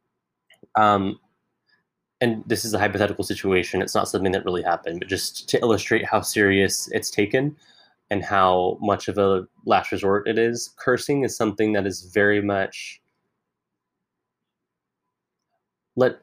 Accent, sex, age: American, male, 20-39